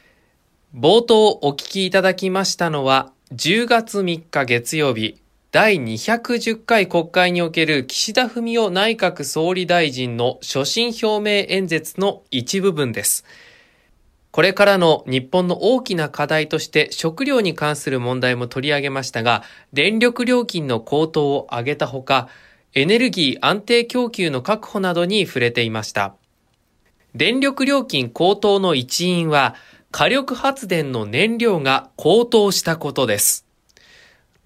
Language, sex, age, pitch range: Japanese, male, 20-39, 135-200 Hz